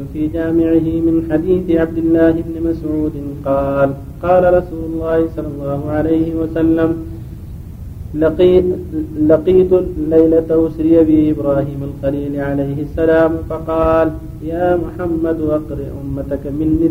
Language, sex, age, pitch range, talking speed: Arabic, male, 40-59, 145-165 Hz, 110 wpm